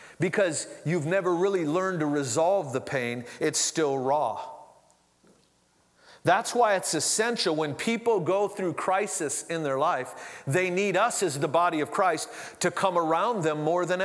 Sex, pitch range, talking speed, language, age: male, 150-195 Hz, 160 wpm, English, 40-59